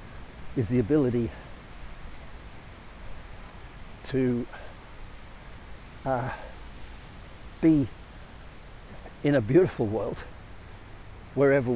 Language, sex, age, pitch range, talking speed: English, male, 60-79, 95-135 Hz, 55 wpm